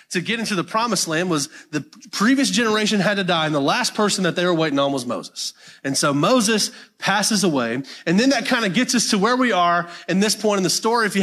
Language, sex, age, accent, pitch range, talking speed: English, male, 30-49, American, 180-240 Hz, 255 wpm